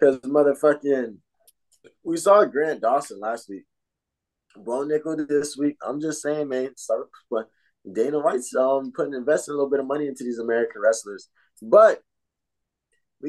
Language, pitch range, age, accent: English, 120-155 Hz, 20-39, American